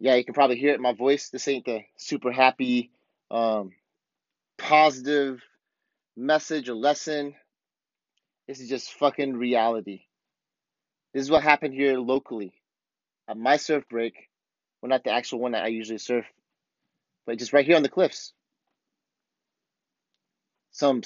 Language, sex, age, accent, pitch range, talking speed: English, male, 30-49, American, 125-155 Hz, 145 wpm